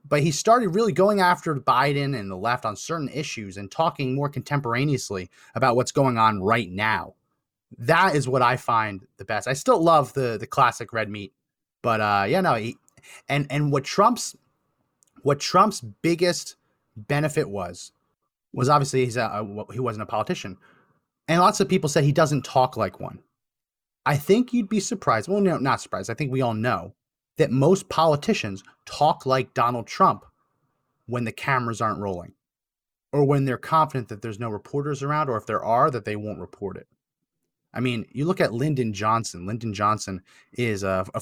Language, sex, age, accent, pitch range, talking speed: English, male, 30-49, American, 110-145 Hz, 185 wpm